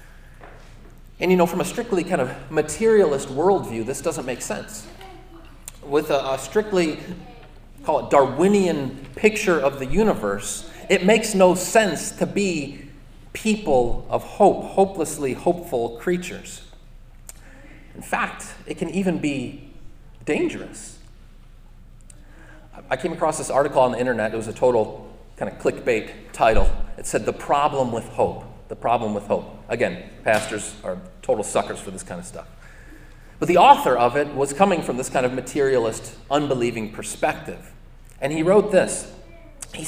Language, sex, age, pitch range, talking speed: English, male, 30-49, 120-175 Hz, 150 wpm